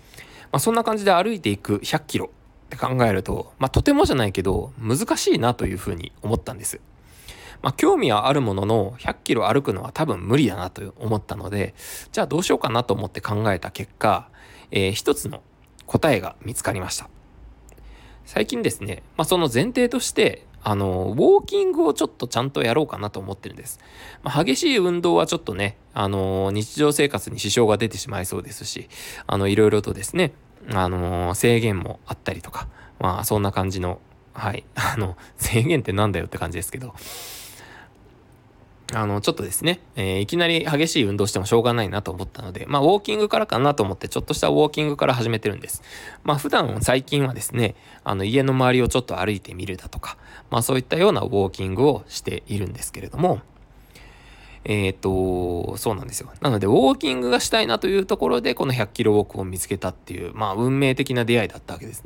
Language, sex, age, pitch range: Japanese, male, 20-39, 95-135 Hz